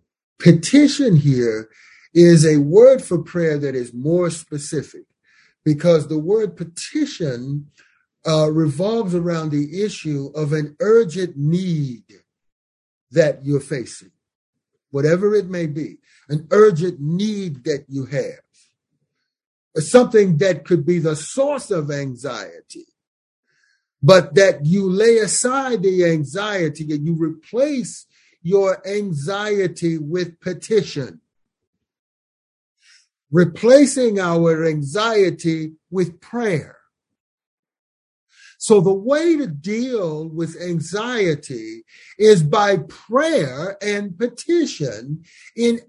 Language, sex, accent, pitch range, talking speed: English, male, American, 155-220 Hz, 100 wpm